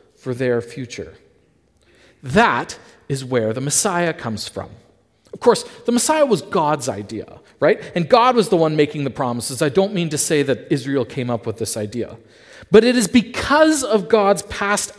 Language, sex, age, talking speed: English, male, 40-59, 180 wpm